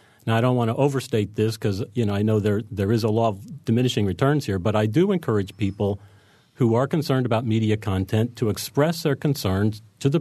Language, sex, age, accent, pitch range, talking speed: English, male, 40-59, American, 105-135 Hz, 225 wpm